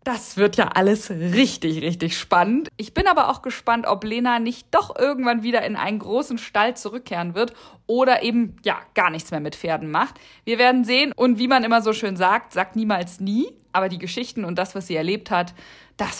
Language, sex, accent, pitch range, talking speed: German, female, German, 185-230 Hz, 205 wpm